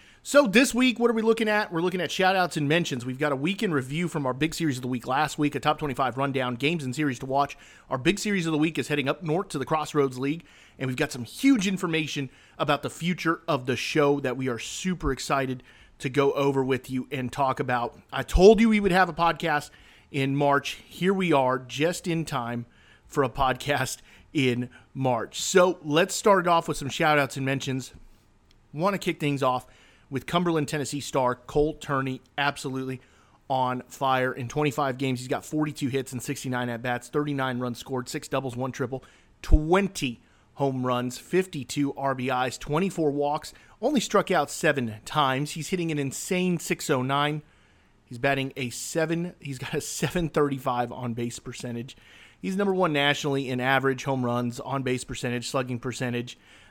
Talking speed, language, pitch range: 190 wpm, English, 130-160 Hz